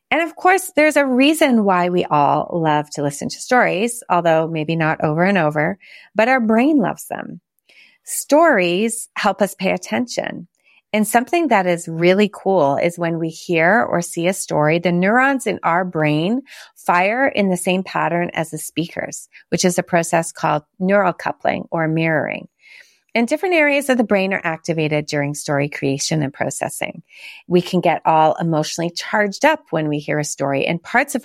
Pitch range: 155-225 Hz